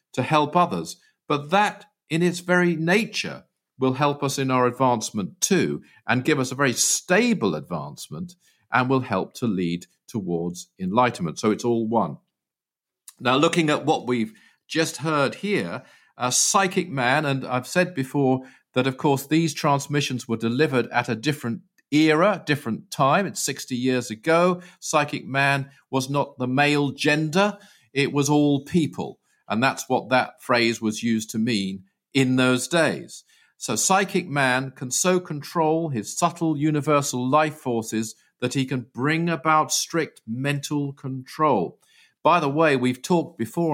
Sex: male